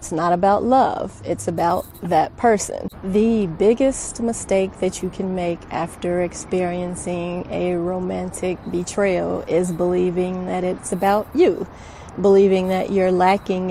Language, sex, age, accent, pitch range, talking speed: English, female, 30-49, American, 185-230 Hz, 130 wpm